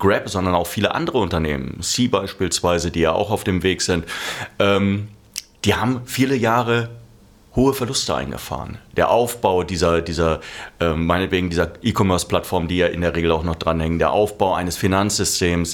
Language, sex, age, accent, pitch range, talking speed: German, male, 30-49, German, 85-110 Hz, 170 wpm